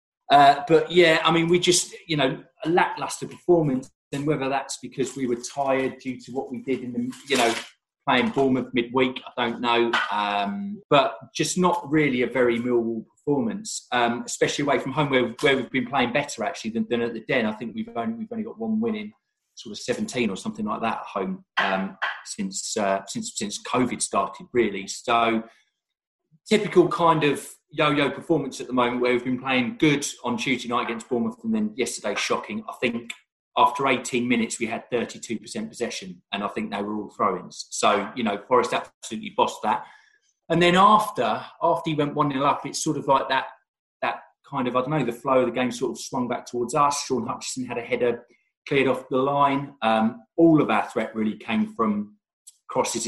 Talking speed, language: 205 wpm, English